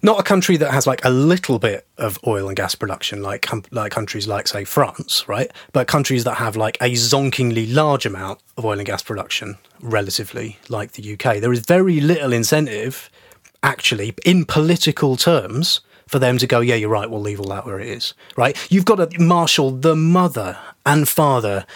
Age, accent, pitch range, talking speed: 30-49, British, 110-145 Hz, 200 wpm